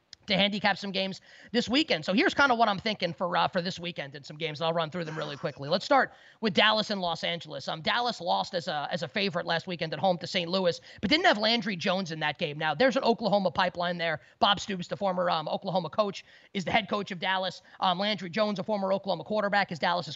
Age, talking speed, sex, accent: 30-49, 255 wpm, male, American